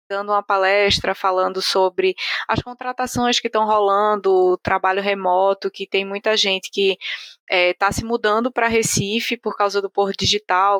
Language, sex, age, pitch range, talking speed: Portuguese, female, 20-39, 195-230 Hz, 155 wpm